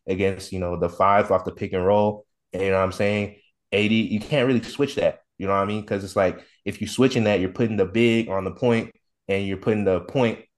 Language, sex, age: English, male, 20-39